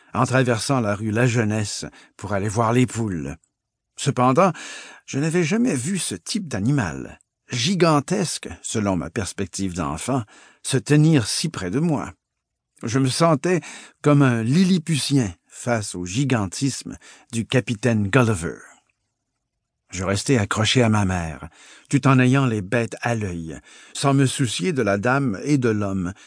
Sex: male